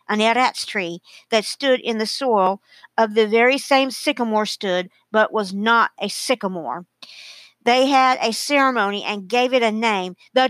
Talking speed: 165 wpm